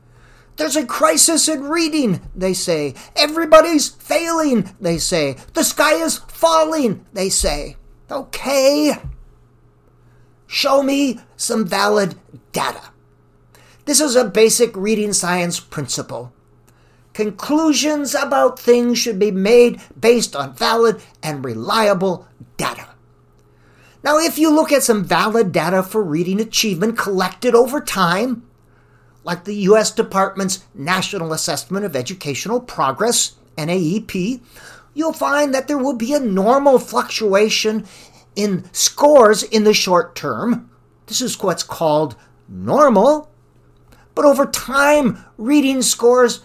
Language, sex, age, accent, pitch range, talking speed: English, male, 50-69, American, 180-260 Hz, 120 wpm